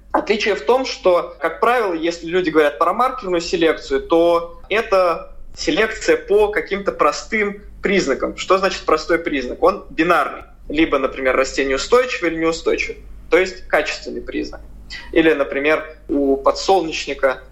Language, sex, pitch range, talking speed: Russian, male, 155-215 Hz, 135 wpm